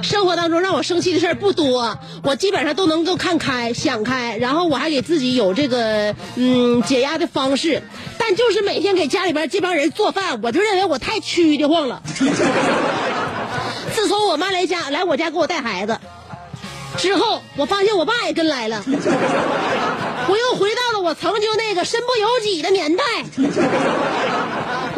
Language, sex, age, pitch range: Chinese, female, 30-49, 280-390 Hz